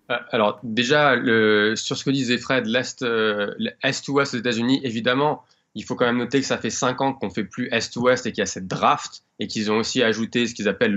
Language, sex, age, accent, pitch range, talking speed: French, male, 20-39, French, 115-145 Hz, 245 wpm